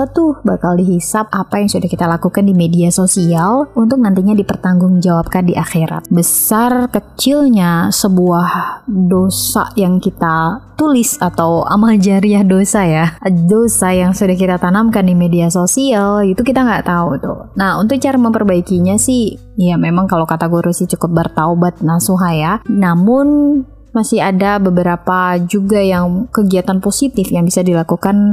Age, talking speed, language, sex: 20-39, 140 wpm, Indonesian, female